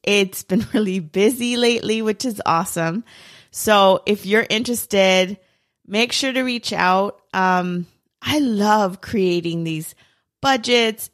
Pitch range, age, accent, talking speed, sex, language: 175-225 Hz, 30-49, American, 125 wpm, female, English